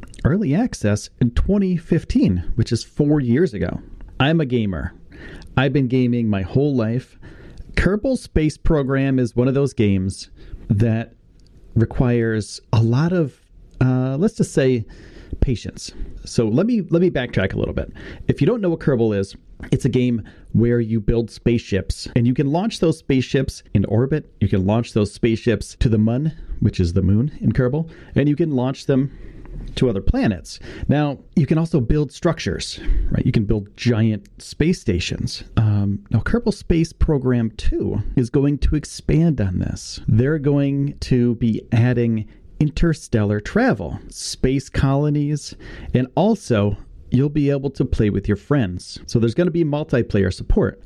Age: 30-49